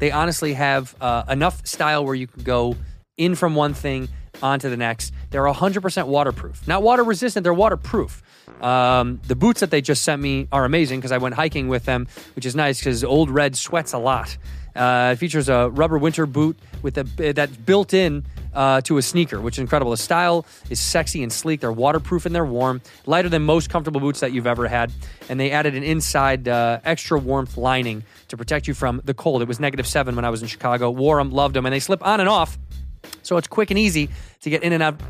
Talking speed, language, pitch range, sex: 225 wpm, English, 125-160 Hz, male